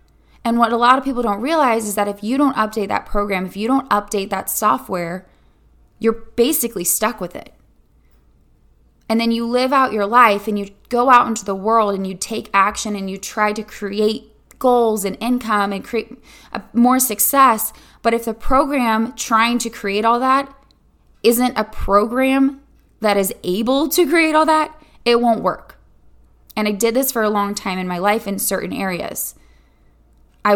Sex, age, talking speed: female, 10-29, 185 wpm